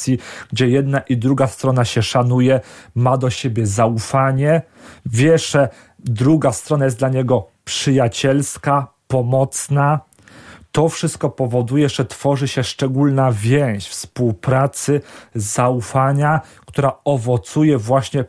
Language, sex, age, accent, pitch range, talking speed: Polish, male, 40-59, native, 125-145 Hz, 110 wpm